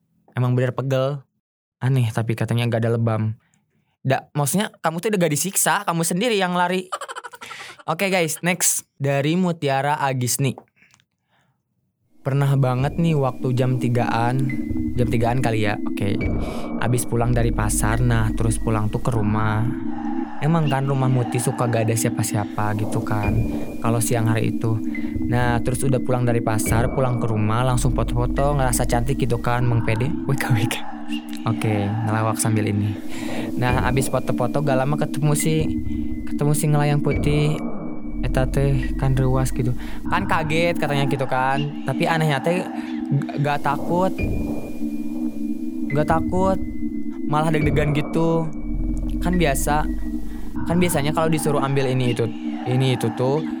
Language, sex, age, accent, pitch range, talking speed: Indonesian, male, 20-39, native, 105-140 Hz, 145 wpm